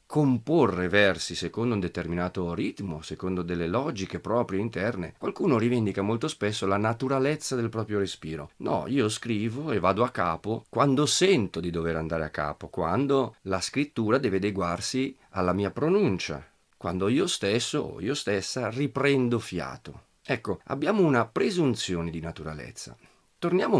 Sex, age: male, 40-59